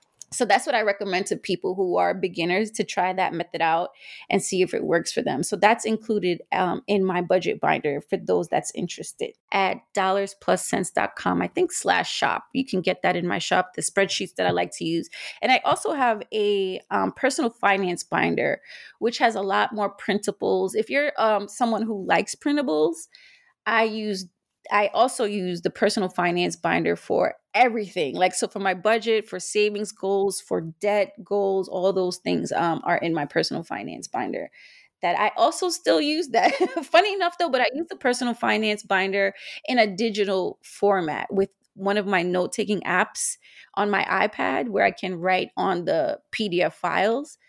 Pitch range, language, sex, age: 185-230 Hz, English, female, 30-49